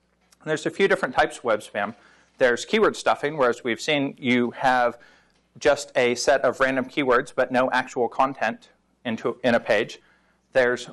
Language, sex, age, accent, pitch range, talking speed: English, male, 40-59, American, 120-155 Hz, 180 wpm